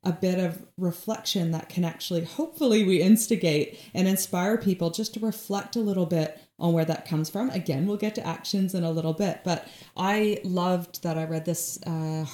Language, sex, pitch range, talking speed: English, female, 165-200 Hz, 200 wpm